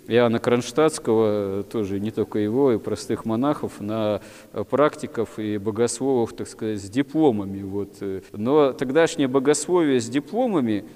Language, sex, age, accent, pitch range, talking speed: Russian, male, 40-59, native, 110-135 Hz, 125 wpm